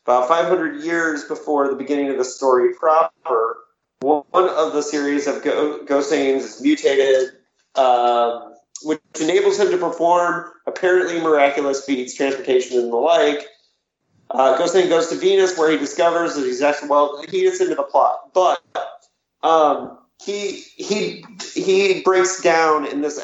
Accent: American